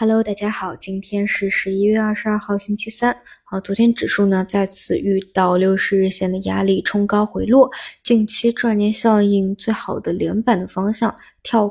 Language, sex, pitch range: Chinese, female, 185-210 Hz